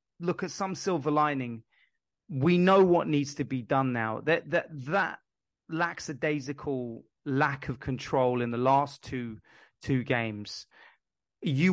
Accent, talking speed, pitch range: British, 140 wpm, 125-160 Hz